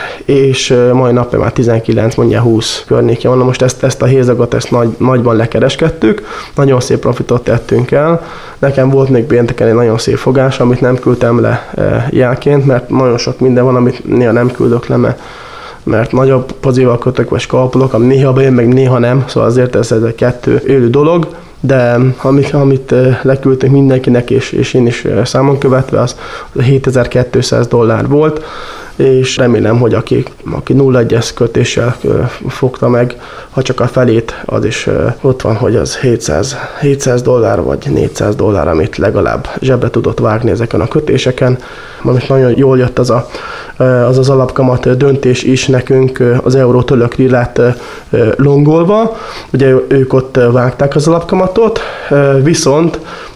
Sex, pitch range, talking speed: male, 120-135 Hz, 155 wpm